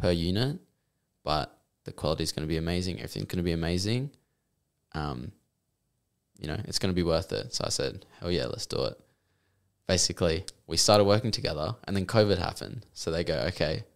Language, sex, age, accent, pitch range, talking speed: English, male, 10-29, Australian, 85-100 Hz, 195 wpm